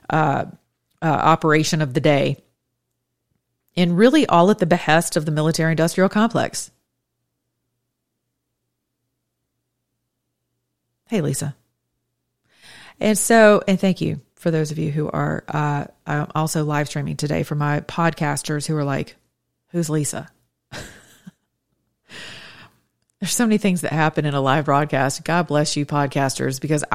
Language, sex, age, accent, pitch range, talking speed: English, female, 40-59, American, 145-175 Hz, 125 wpm